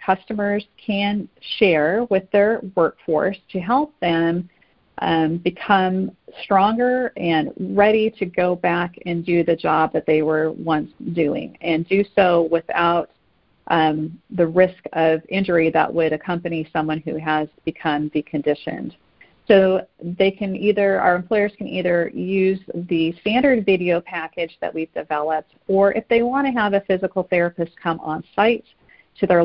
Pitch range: 165-200 Hz